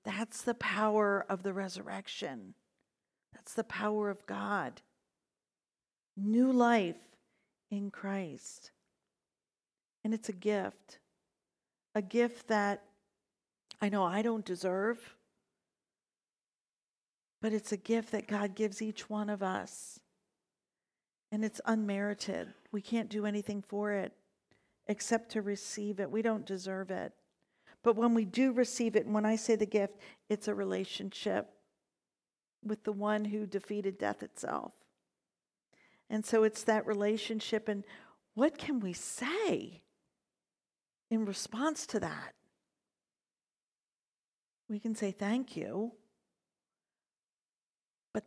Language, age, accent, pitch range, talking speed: English, 50-69, American, 200-225 Hz, 120 wpm